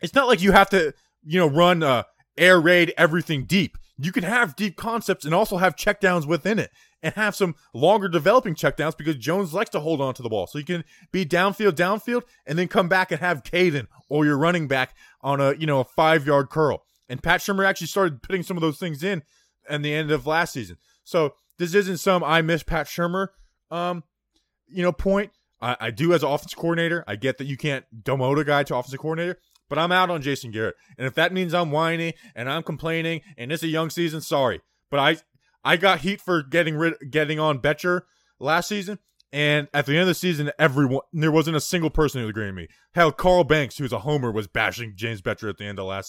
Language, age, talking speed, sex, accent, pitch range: English, 20-39, 230 wpm, male, American, 140-180 Hz